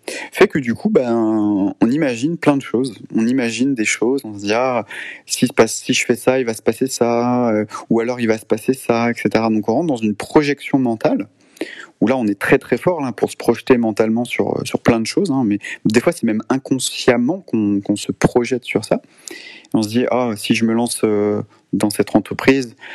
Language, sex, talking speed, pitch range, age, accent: French, male, 225 wpm, 105-130 Hz, 30-49, French